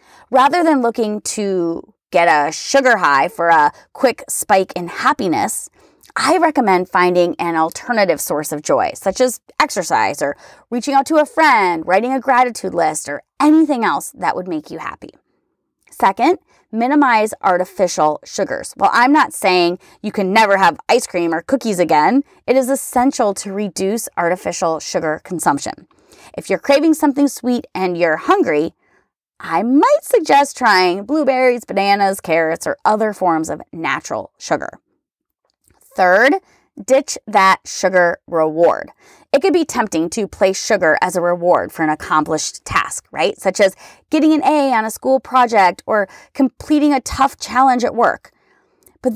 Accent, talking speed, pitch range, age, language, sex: American, 155 wpm, 180-280 Hz, 30-49, English, female